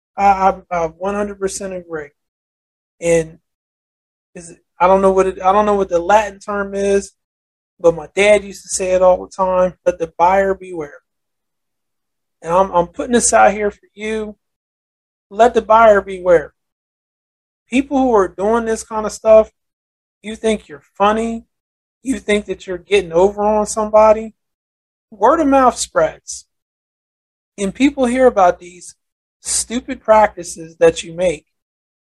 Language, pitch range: English, 170-215 Hz